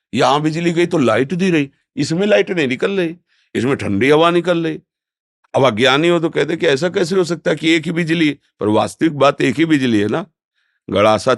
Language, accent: Hindi, native